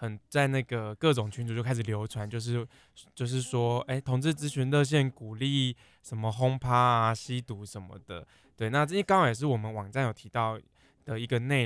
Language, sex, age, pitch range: Chinese, male, 20-39, 110-140 Hz